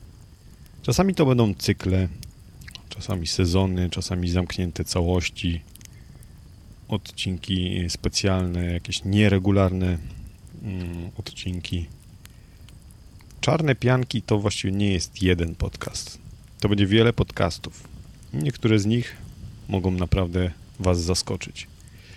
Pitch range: 90-110 Hz